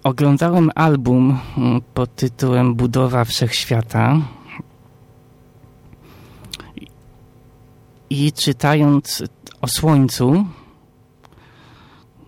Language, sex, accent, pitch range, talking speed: Polish, male, native, 120-145 Hz, 50 wpm